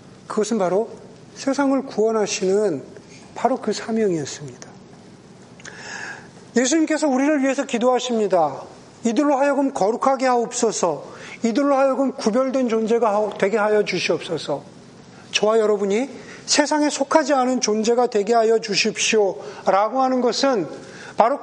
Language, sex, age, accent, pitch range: Korean, male, 40-59, native, 215-280 Hz